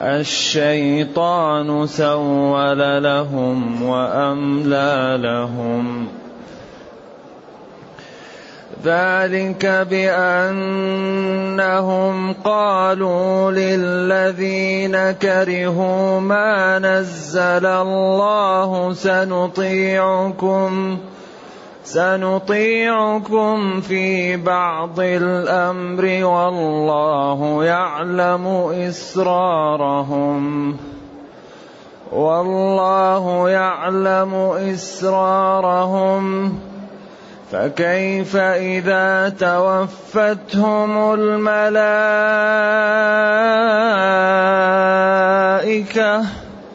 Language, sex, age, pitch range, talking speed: Arabic, male, 30-49, 175-195 Hz, 35 wpm